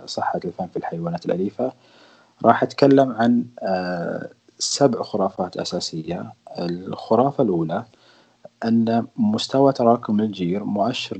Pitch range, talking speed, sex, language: 95-120 Hz, 95 wpm, male, Arabic